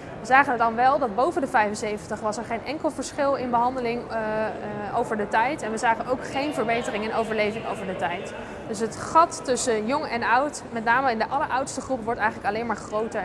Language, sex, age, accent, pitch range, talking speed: Dutch, female, 20-39, Dutch, 225-275 Hz, 220 wpm